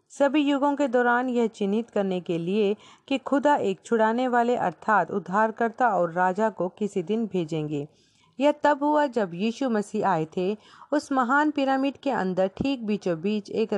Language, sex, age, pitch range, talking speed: Hindi, female, 40-59, 185-250 Hz, 160 wpm